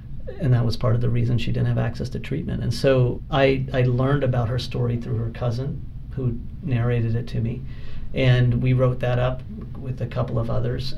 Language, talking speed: English, 215 wpm